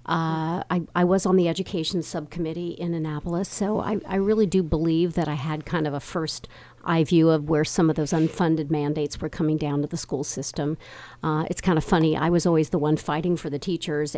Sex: female